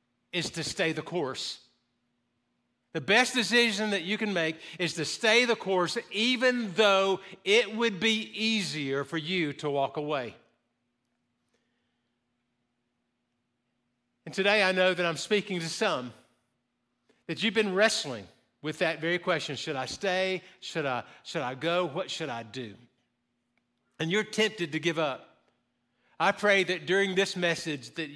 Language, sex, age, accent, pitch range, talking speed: English, male, 50-69, American, 145-200 Hz, 145 wpm